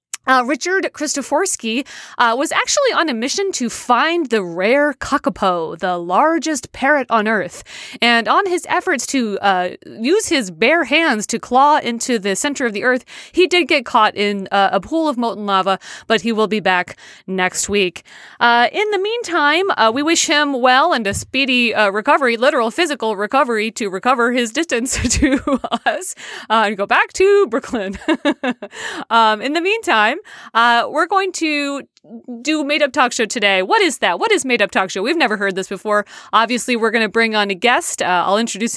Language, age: English, 30-49